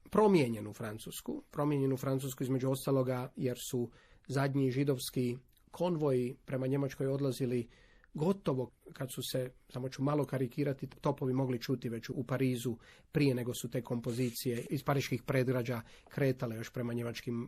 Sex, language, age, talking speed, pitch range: male, Croatian, 40-59, 135 wpm, 130-155 Hz